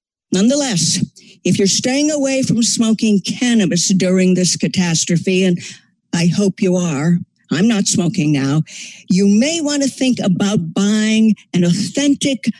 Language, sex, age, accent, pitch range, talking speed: English, female, 50-69, American, 185-225 Hz, 140 wpm